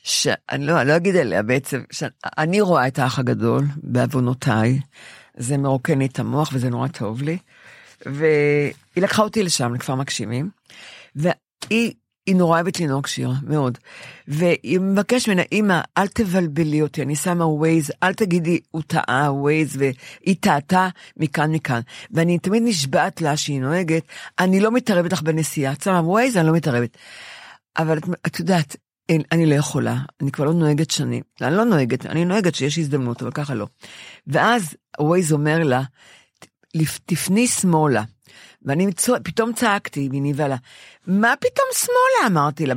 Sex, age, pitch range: female, 50-69, 140-195 Hz